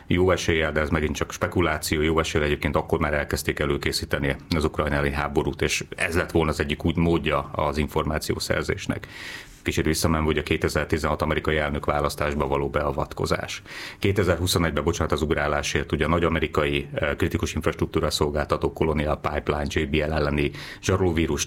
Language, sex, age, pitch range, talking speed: Hungarian, male, 30-49, 75-95 Hz, 150 wpm